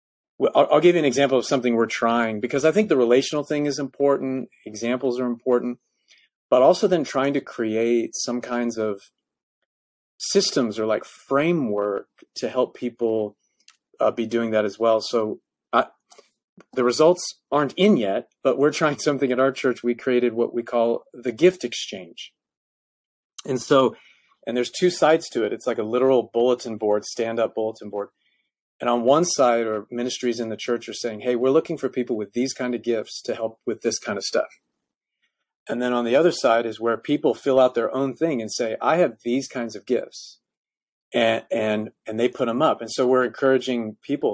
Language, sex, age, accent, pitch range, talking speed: English, male, 30-49, American, 115-135 Hz, 195 wpm